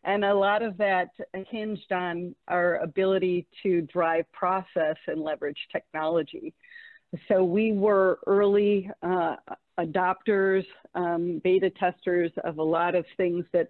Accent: American